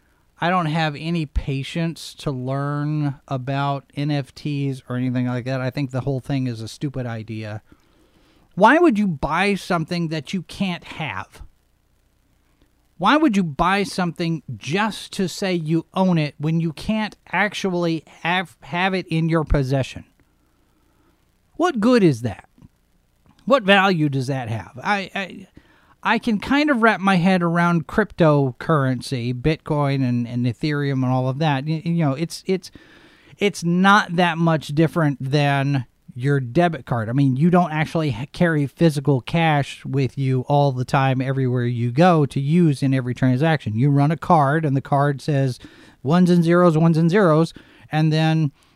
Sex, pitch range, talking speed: male, 135-175 Hz, 160 wpm